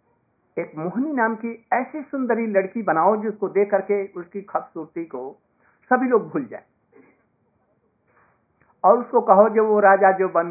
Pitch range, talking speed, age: 155-200 Hz, 150 wpm, 60-79